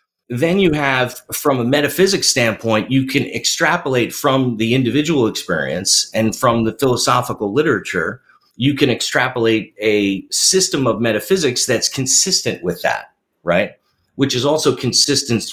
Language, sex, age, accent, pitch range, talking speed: English, male, 30-49, American, 100-135 Hz, 135 wpm